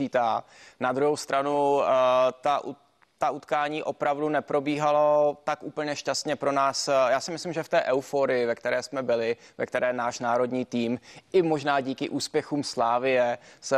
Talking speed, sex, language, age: 155 wpm, male, Czech, 20-39